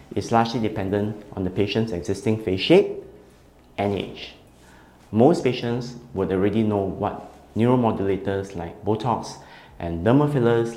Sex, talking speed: male, 130 wpm